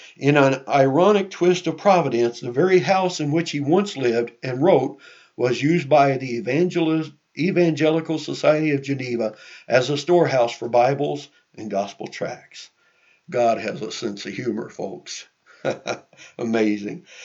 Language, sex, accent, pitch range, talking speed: English, male, American, 120-160 Hz, 145 wpm